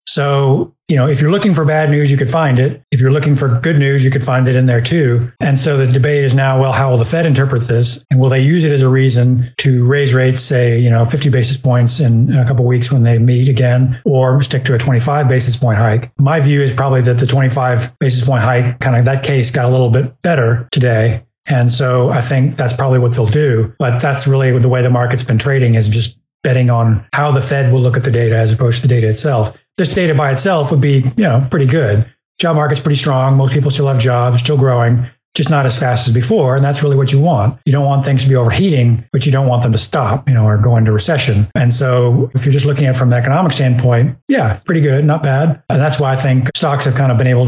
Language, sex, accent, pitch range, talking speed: English, male, American, 120-140 Hz, 265 wpm